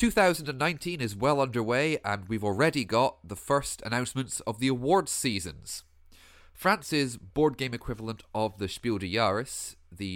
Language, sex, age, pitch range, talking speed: English, male, 30-49, 90-140 Hz, 150 wpm